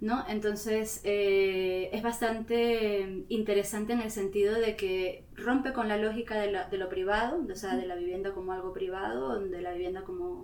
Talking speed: 190 wpm